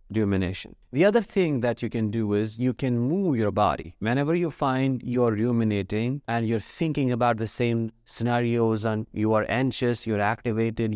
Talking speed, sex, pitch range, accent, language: 175 wpm, male, 110-130 Hz, Indian, English